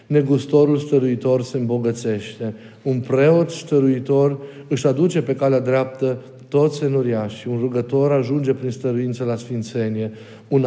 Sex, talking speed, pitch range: male, 130 wpm, 120-150 Hz